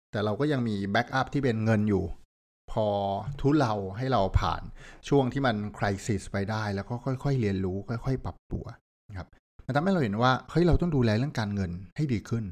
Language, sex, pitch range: Thai, male, 100-130 Hz